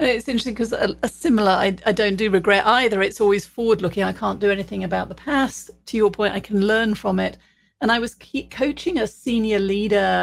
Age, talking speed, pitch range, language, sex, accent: 40-59, 215 wpm, 195-235 Hz, English, female, British